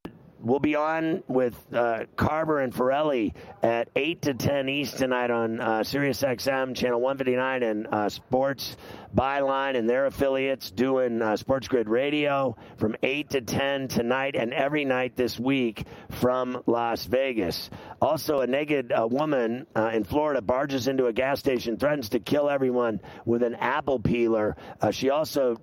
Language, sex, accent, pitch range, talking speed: English, male, American, 115-140 Hz, 160 wpm